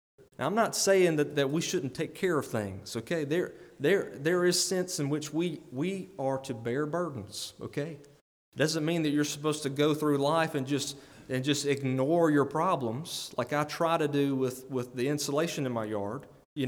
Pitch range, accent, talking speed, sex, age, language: 125-160 Hz, American, 205 wpm, male, 30-49, English